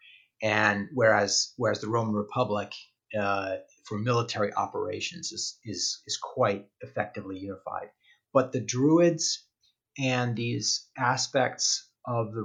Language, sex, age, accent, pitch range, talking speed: English, male, 30-49, American, 105-120 Hz, 115 wpm